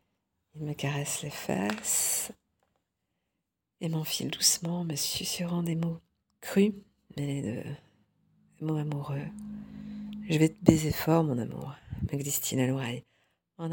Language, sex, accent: French, female, French